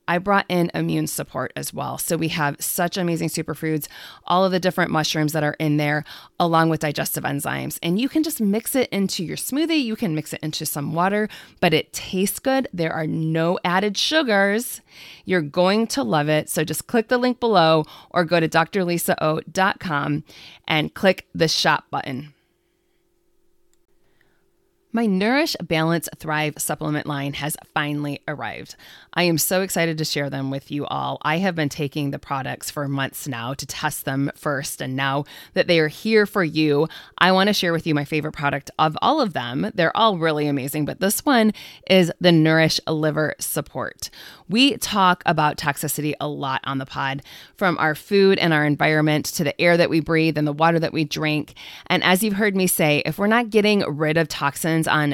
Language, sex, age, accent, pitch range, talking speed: English, female, 20-39, American, 150-195 Hz, 195 wpm